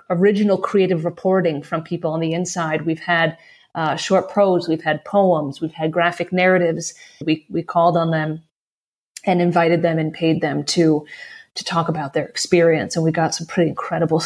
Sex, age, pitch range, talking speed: female, 30-49, 165-190 Hz, 180 wpm